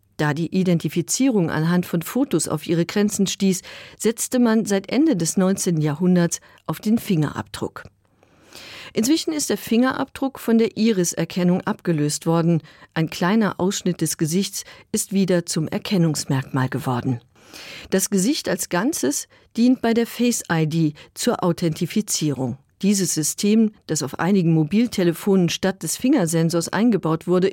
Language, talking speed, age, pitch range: German, 130 wpm, 50-69, 165-215 Hz